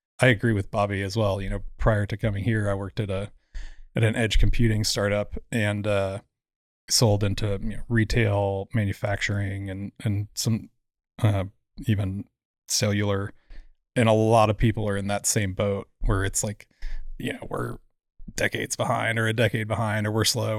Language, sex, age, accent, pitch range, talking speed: English, male, 20-39, American, 105-120 Hz, 170 wpm